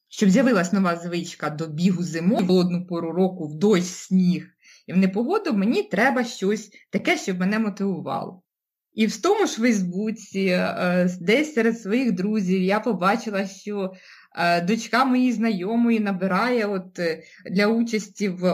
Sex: female